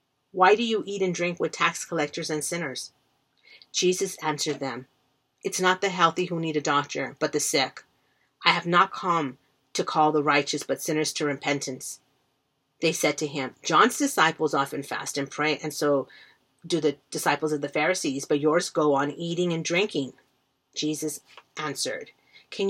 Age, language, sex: 40-59, English, female